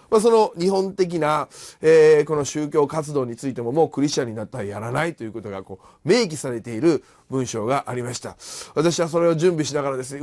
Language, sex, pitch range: Japanese, male, 135-185 Hz